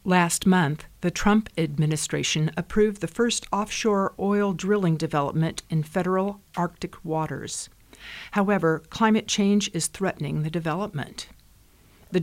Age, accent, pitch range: 50-69, American, 165-205 Hz